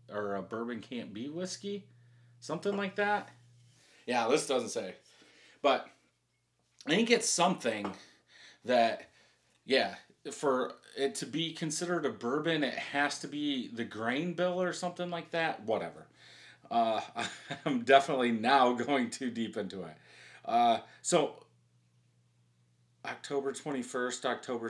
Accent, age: American, 30-49